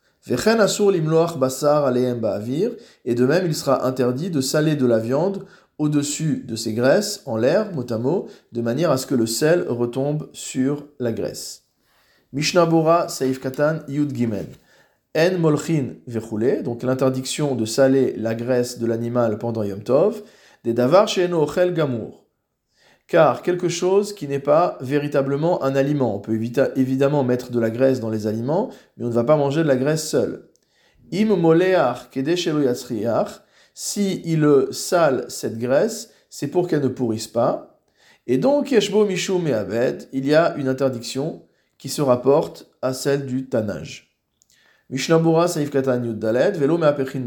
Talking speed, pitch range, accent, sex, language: 135 wpm, 125-165 Hz, French, male, French